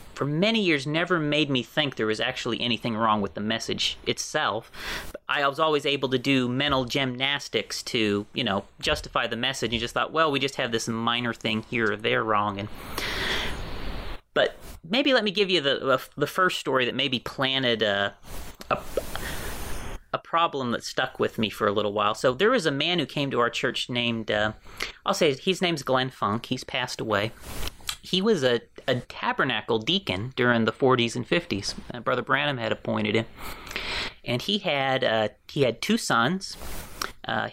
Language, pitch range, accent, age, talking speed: English, 115-150 Hz, American, 30-49, 185 wpm